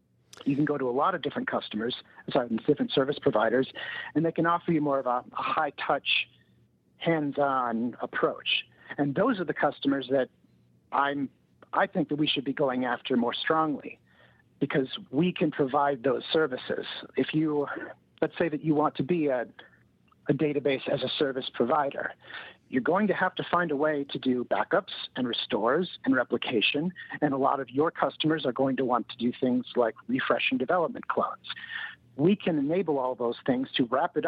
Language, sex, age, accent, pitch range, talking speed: English, male, 50-69, American, 130-165 Hz, 185 wpm